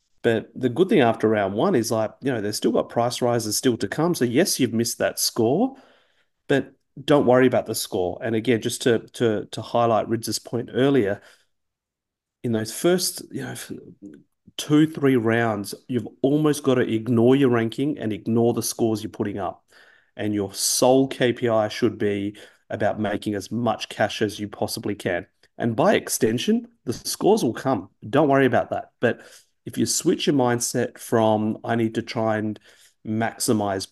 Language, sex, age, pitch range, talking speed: English, male, 30-49, 110-130 Hz, 180 wpm